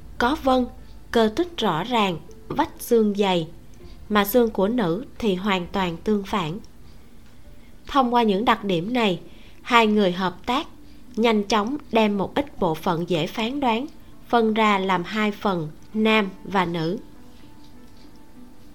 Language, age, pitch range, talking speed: Vietnamese, 20-39, 185-235 Hz, 145 wpm